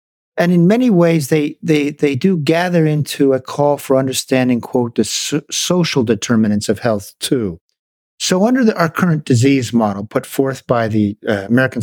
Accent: American